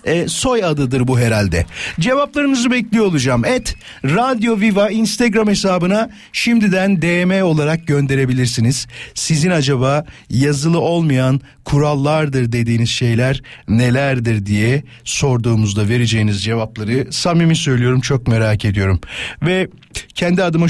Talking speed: 105 wpm